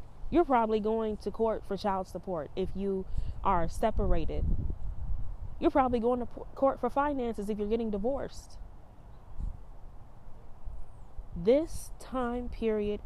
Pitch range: 185-235 Hz